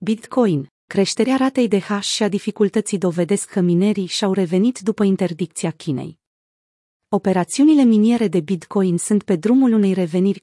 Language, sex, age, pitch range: Romanian, female, 30-49, 180-220 Hz